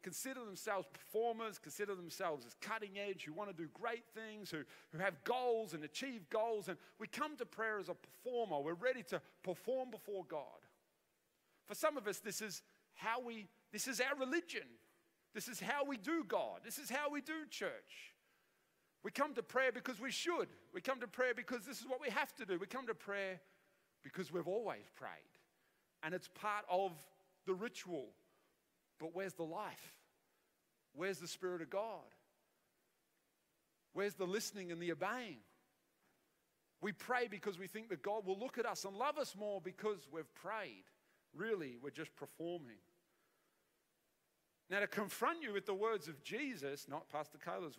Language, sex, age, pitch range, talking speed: English, male, 40-59, 185-245 Hz, 175 wpm